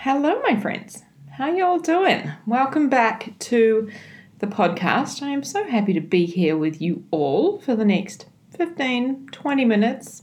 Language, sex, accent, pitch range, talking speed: English, female, Australian, 170-245 Hz, 160 wpm